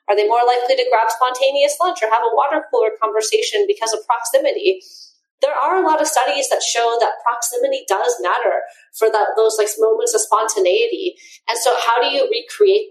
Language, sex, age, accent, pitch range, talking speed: English, female, 30-49, American, 200-305 Hz, 195 wpm